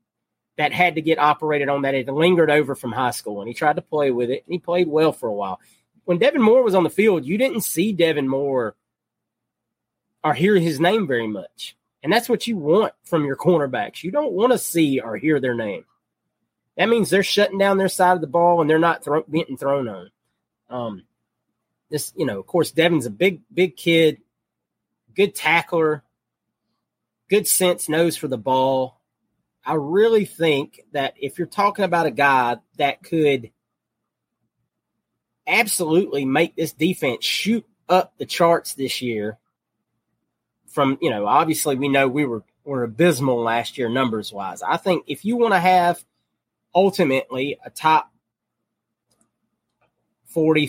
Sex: male